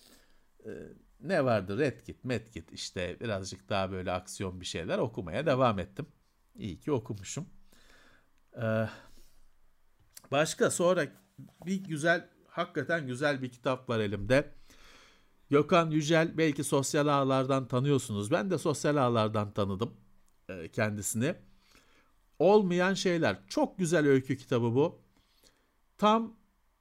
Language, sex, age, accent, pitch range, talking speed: Turkish, male, 60-79, native, 130-190 Hz, 110 wpm